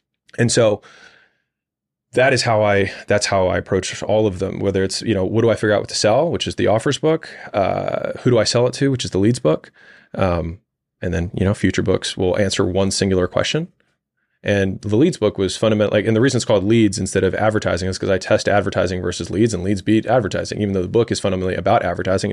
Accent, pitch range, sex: American, 95-115 Hz, male